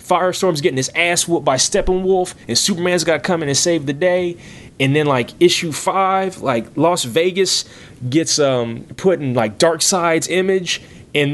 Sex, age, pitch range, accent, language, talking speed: male, 30-49, 115-160 Hz, American, English, 180 wpm